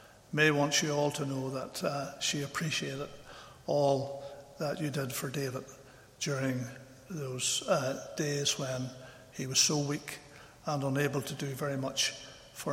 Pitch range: 130-150 Hz